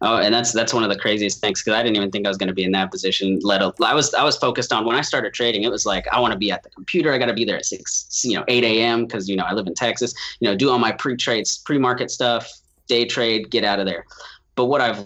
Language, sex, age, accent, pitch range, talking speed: English, male, 20-39, American, 100-125 Hz, 305 wpm